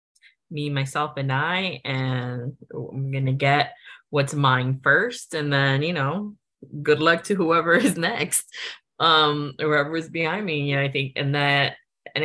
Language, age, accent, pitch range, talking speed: English, 20-39, American, 135-175 Hz, 160 wpm